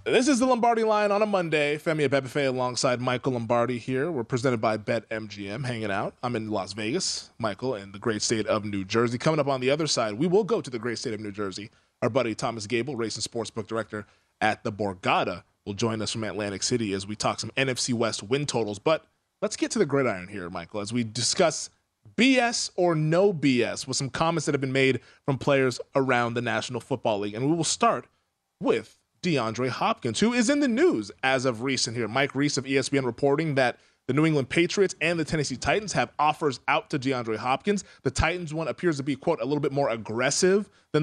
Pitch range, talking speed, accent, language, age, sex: 115-160 Hz, 220 wpm, American, English, 20-39, male